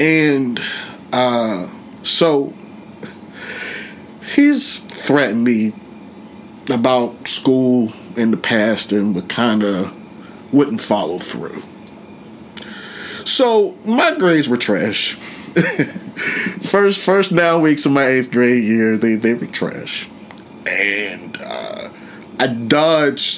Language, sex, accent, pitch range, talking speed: English, male, American, 120-175 Hz, 105 wpm